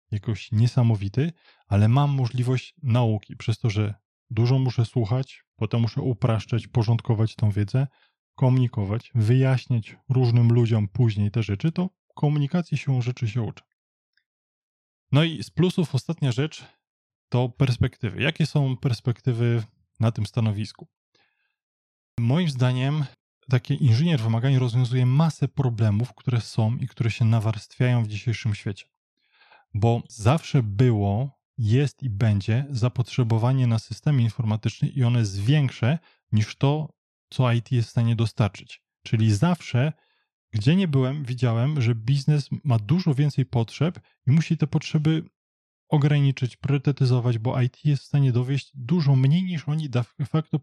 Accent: native